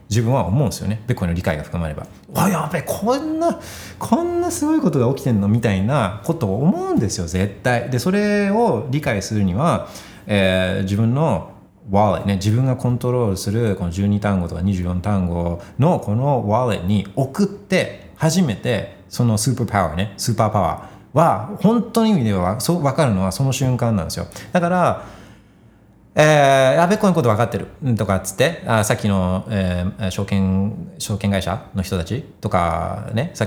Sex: male